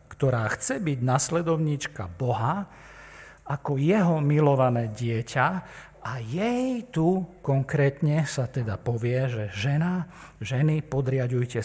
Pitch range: 115-145 Hz